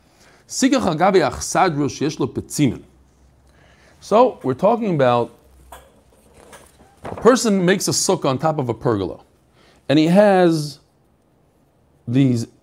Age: 40-59